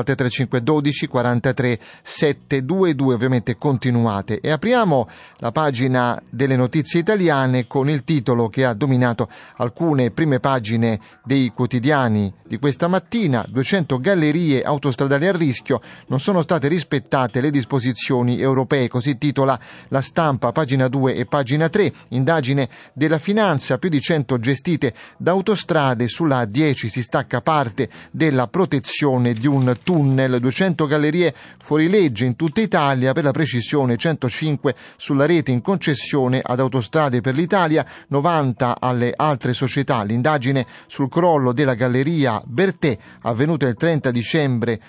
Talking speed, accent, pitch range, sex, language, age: 135 wpm, native, 125-155 Hz, male, Italian, 30-49